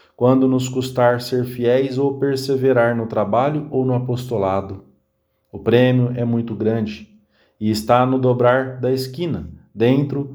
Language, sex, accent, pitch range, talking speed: English, male, Brazilian, 105-140 Hz, 140 wpm